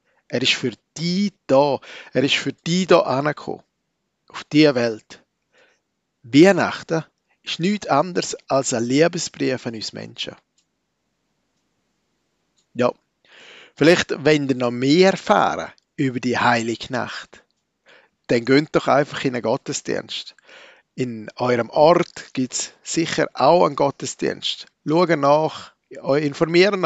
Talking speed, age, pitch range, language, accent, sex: 120 wpm, 50-69, 125-165 Hz, German, Austrian, male